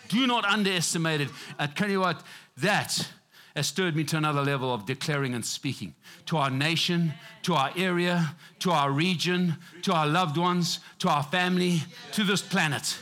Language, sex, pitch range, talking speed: English, male, 140-180 Hz, 175 wpm